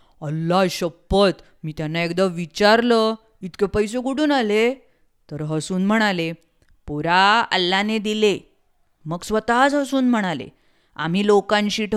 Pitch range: 185-225 Hz